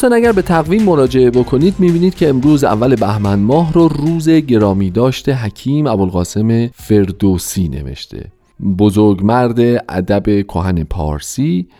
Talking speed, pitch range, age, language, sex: 115 wpm, 90-135 Hz, 40-59, Persian, male